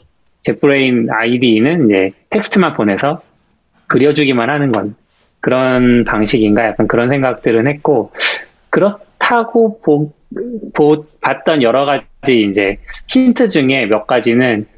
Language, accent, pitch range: Korean, native, 115-175 Hz